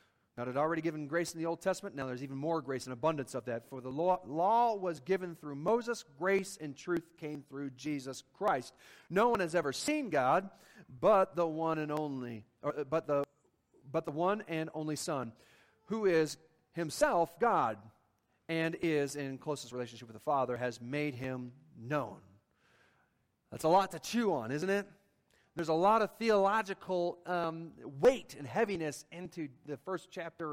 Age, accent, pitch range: 40-59, American, 135-185 Hz